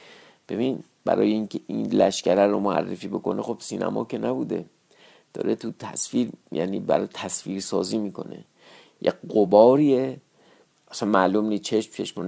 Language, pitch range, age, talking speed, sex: Persian, 95-120 Hz, 50-69, 130 wpm, male